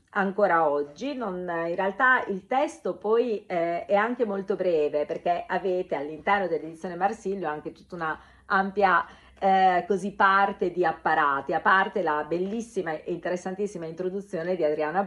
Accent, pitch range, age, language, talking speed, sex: native, 170-225 Hz, 40-59, Italian, 145 wpm, female